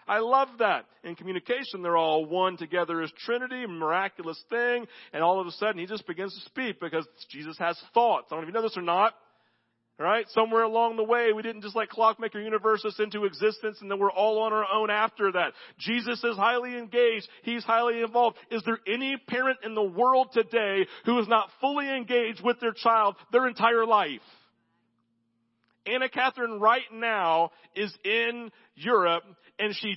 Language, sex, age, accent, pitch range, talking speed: English, male, 40-59, American, 190-240 Hz, 190 wpm